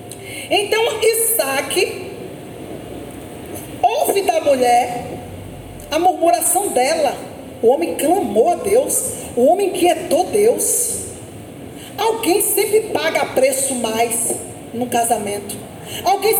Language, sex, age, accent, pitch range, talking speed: Portuguese, female, 40-59, Brazilian, 320-440 Hz, 90 wpm